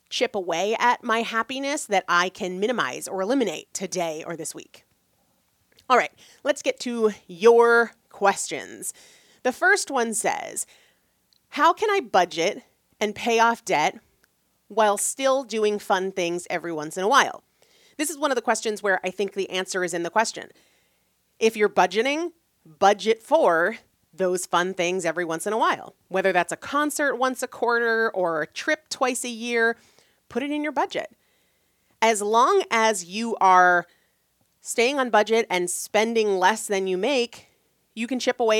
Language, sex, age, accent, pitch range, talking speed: English, female, 30-49, American, 190-250 Hz, 170 wpm